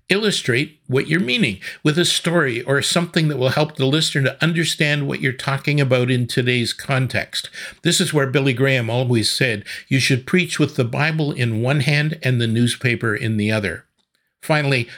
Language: English